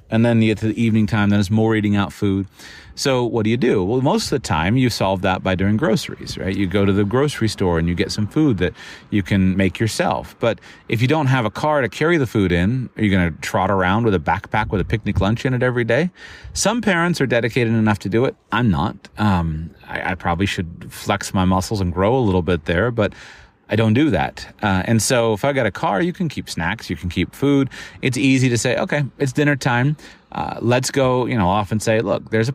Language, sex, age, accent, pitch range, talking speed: English, male, 30-49, American, 95-120 Hz, 260 wpm